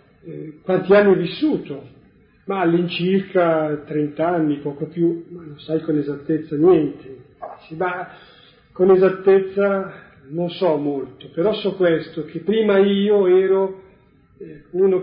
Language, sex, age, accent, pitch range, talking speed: Italian, male, 40-59, native, 150-185 Hz, 130 wpm